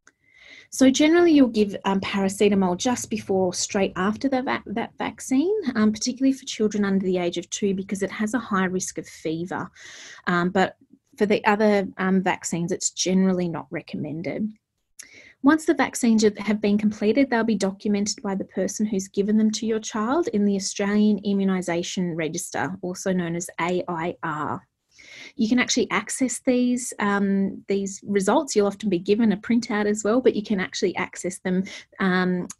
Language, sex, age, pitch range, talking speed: English, female, 30-49, 185-220 Hz, 170 wpm